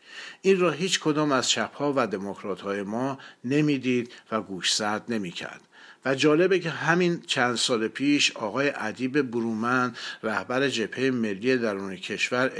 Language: Persian